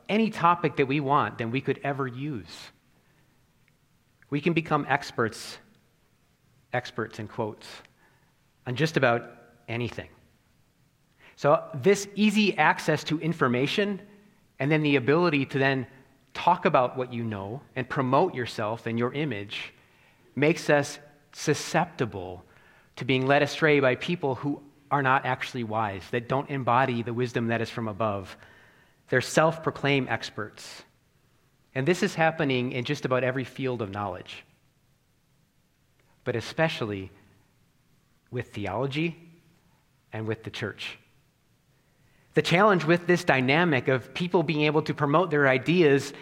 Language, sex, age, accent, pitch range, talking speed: English, male, 30-49, American, 125-155 Hz, 130 wpm